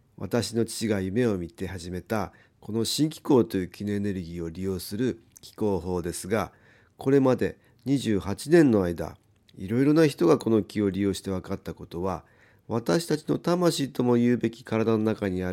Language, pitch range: Japanese, 95-125 Hz